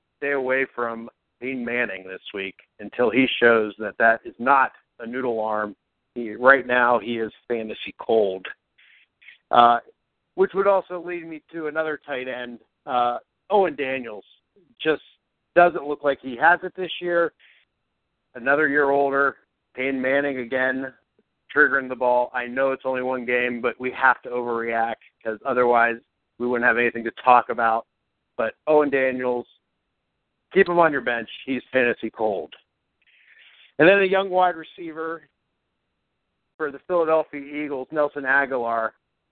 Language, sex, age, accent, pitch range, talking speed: English, male, 50-69, American, 120-145 Hz, 150 wpm